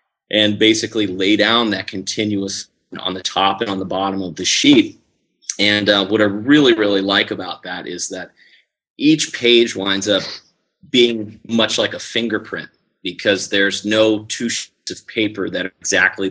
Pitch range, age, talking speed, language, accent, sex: 95-115 Hz, 30-49, 170 wpm, English, American, male